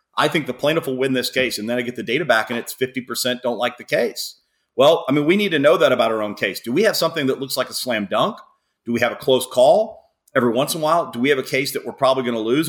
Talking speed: 310 wpm